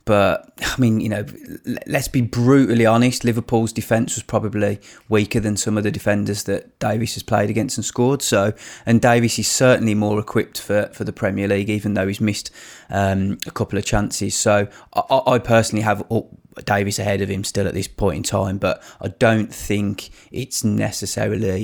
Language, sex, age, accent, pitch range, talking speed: English, male, 20-39, British, 100-115 Hz, 190 wpm